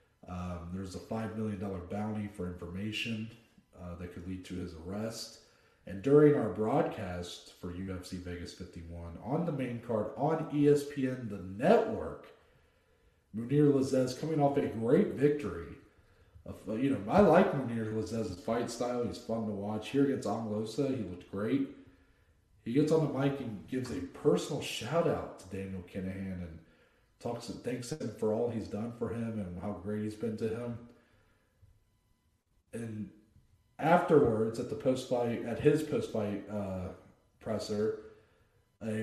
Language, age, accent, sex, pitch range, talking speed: English, 40-59, American, male, 95-120 Hz, 155 wpm